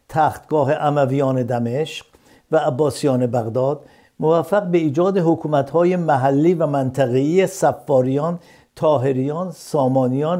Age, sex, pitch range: 60-79, male, 140-175 Hz